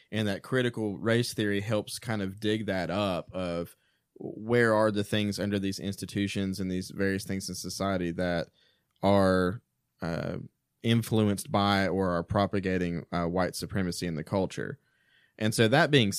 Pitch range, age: 95-110 Hz, 20-39